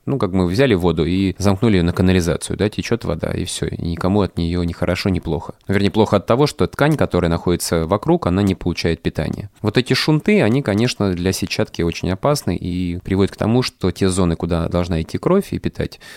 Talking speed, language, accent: 215 wpm, Russian, native